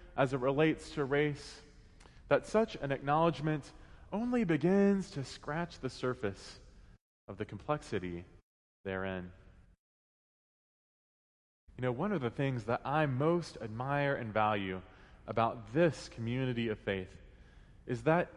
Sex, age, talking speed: male, 20-39, 125 wpm